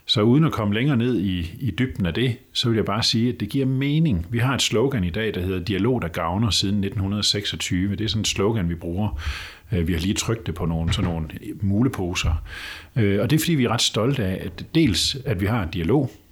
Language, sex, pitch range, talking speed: Danish, male, 90-125 Hz, 245 wpm